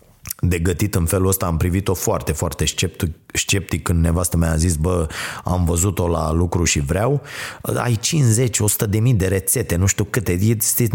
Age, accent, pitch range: 30-49, native, 95-135 Hz